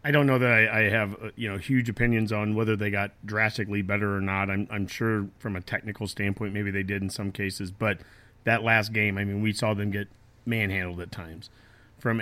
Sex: male